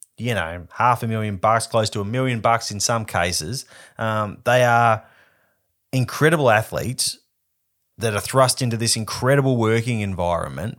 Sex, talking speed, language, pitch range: male, 150 wpm, English, 100-120 Hz